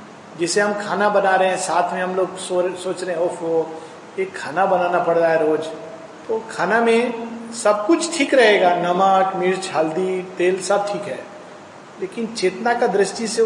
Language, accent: Hindi, native